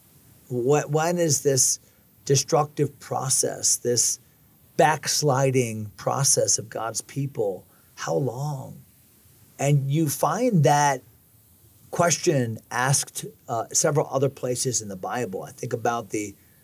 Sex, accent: male, American